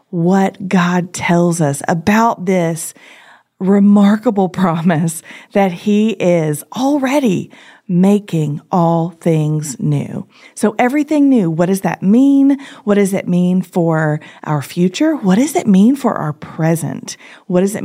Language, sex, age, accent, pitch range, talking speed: English, female, 40-59, American, 160-205 Hz, 135 wpm